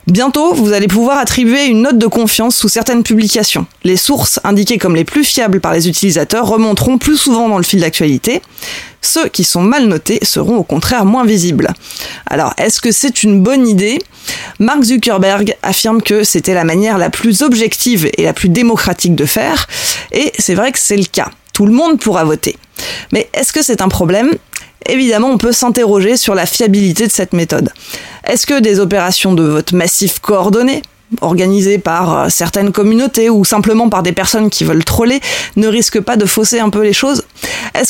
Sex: female